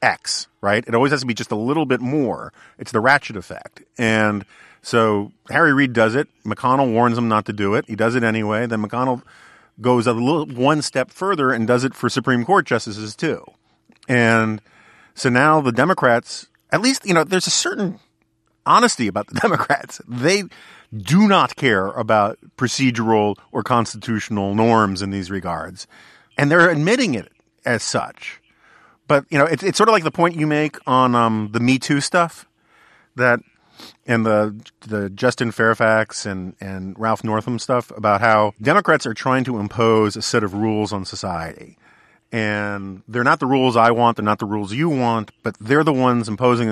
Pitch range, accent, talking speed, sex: 110-140 Hz, American, 185 wpm, male